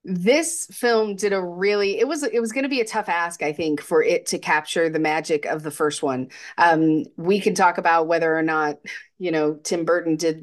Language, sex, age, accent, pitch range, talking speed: English, female, 30-49, American, 160-205 Hz, 225 wpm